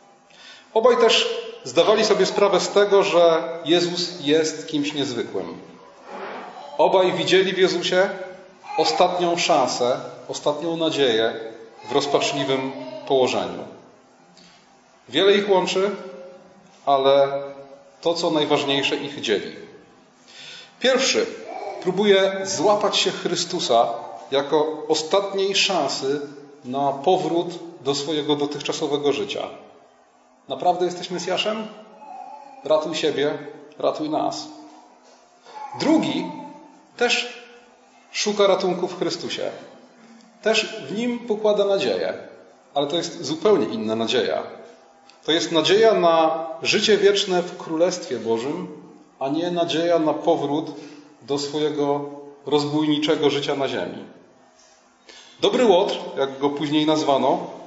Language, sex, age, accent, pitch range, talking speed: Polish, male, 40-59, native, 145-200 Hz, 100 wpm